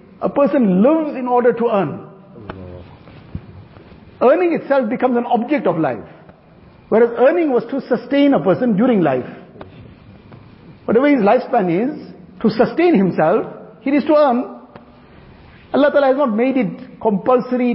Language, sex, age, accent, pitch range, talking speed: English, male, 60-79, Indian, 195-250 Hz, 140 wpm